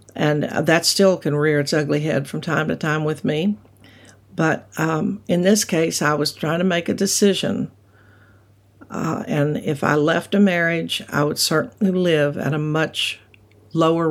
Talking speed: 175 wpm